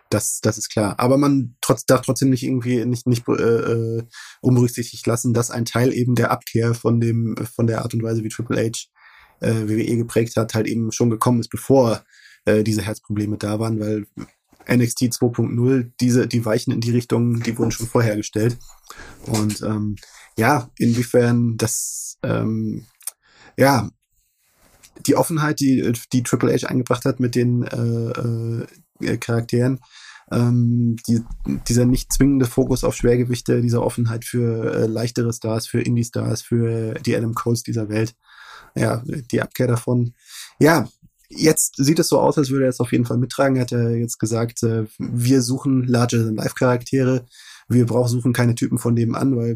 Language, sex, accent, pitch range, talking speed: German, male, German, 115-125 Hz, 170 wpm